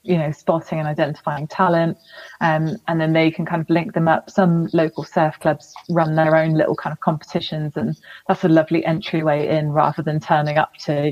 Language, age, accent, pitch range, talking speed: English, 20-39, British, 155-180 Hz, 210 wpm